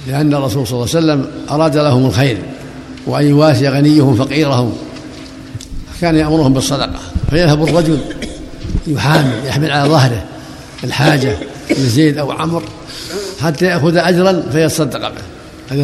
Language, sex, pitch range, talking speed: Arabic, male, 135-165 Hz, 120 wpm